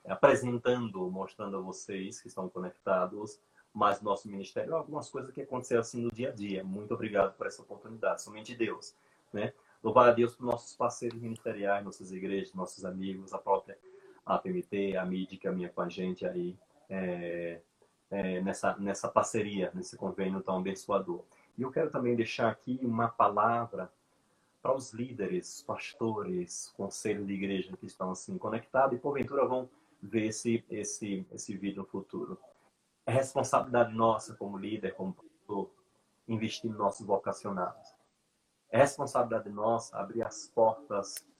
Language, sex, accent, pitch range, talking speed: Portuguese, male, Brazilian, 100-125 Hz, 155 wpm